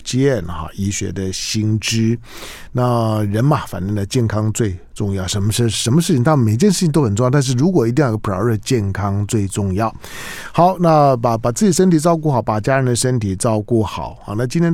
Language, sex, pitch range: Chinese, male, 105-135 Hz